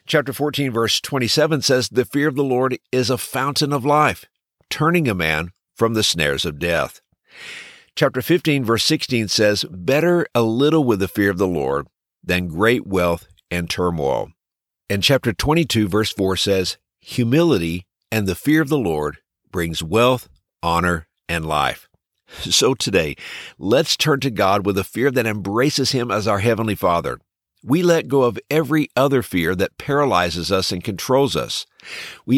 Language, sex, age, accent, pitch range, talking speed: English, male, 60-79, American, 95-140 Hz, 165 wpm